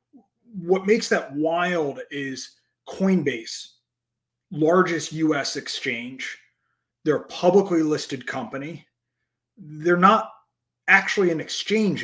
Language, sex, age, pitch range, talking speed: English, male, 30-49, 160-250 Hz, 95 wpm